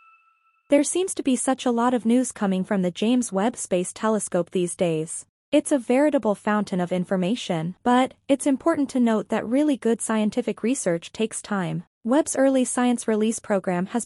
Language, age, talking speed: English, 20-39, 180 wpm